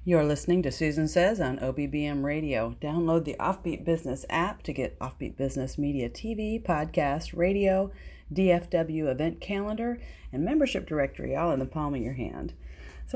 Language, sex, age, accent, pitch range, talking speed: English, female, 40-59, American, 135-180 Hz, 160 wpm